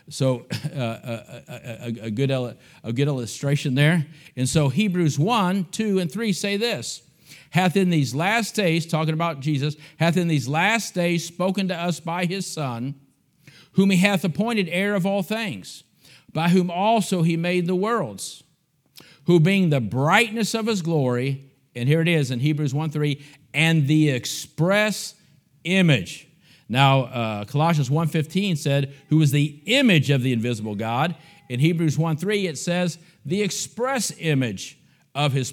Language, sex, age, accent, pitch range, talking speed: English, male, 50-69, American, 140-175 Hz, 160 wpm